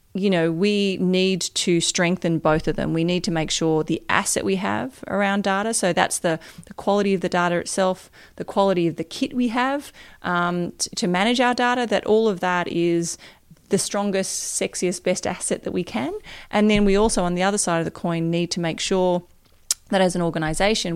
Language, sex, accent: English, female, Australian